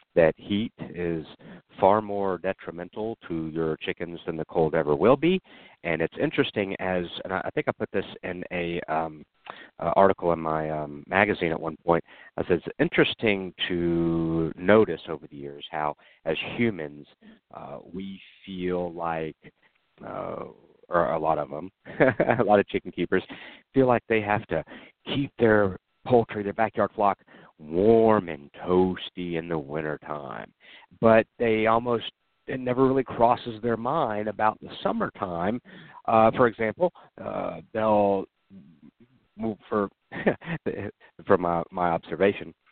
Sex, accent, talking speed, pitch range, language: male, American, 150 wpm, 85-125 Hz, English